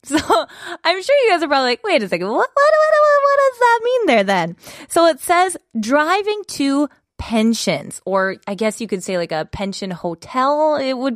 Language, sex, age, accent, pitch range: Korean, female, 20-39, American, 195-285 Hz